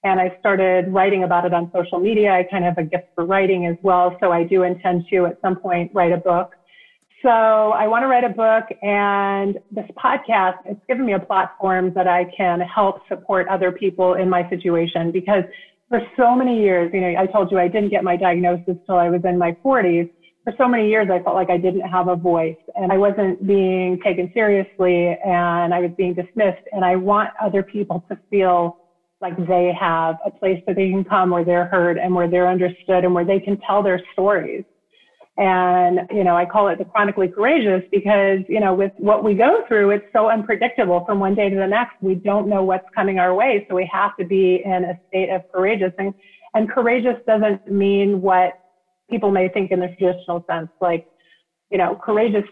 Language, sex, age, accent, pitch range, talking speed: English, female, 30-49, American, 180-205 Hz, 215 wpm